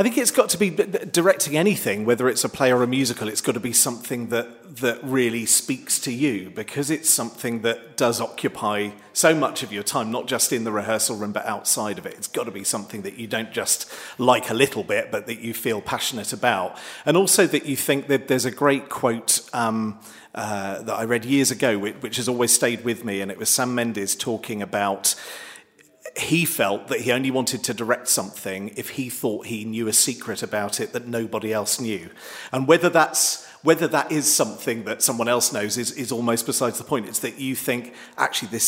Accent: British